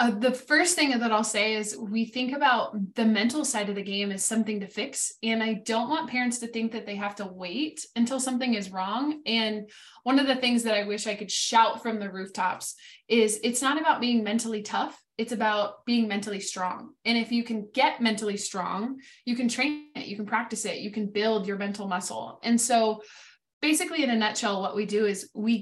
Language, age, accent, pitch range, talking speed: English, 20-39, American, 210-245 Hz, 225 wpm